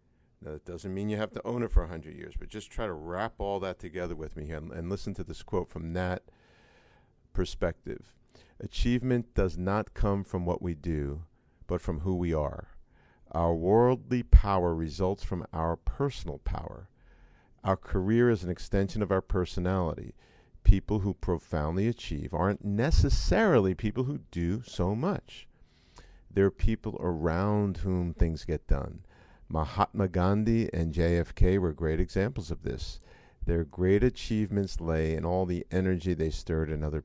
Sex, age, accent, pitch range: male, 50-69, American, 85-105 Hz